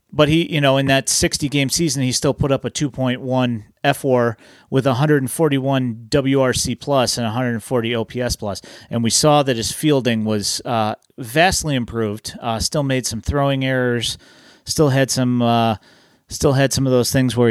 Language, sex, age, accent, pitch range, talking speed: English, male, 30-49, American, 115-140 Hz, 170 wpm